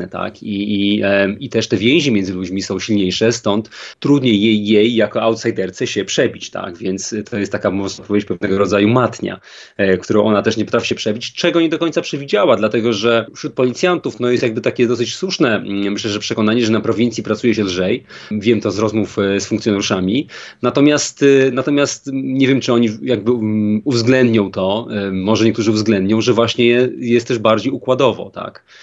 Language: Polish